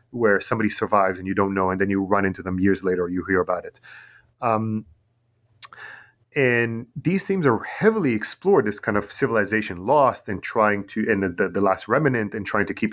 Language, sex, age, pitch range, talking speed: English, male, 30-49, 95-125 Hz, 205 wpm